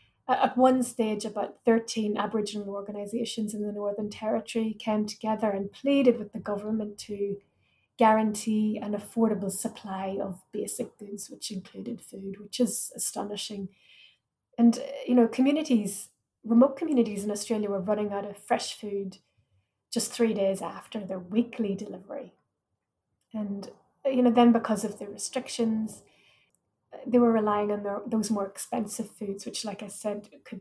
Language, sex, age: English, female, 30-49